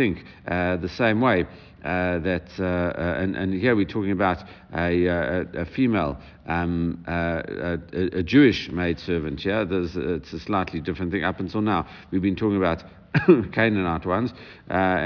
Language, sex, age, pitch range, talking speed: English, male, 50-69, 85-105 Hz, 170 wpm